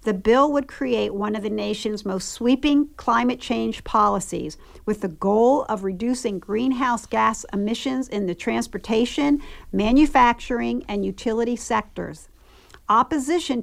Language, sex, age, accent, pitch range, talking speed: English, female, 50-69, American, 210-260 Hz, 130 wpm